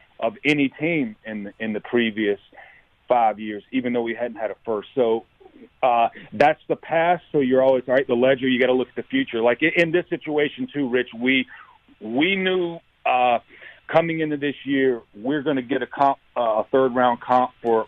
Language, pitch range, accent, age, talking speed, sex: English, 115-145 Hz, American, 40-59, 210 wpm, male